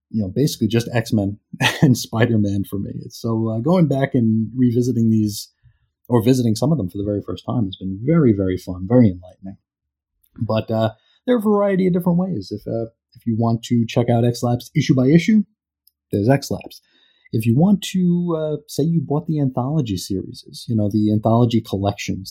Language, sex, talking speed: English, male, 205 wpm